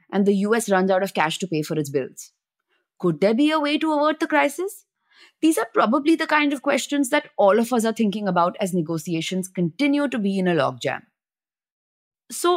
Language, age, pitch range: English, 20-39, 170-260 Hz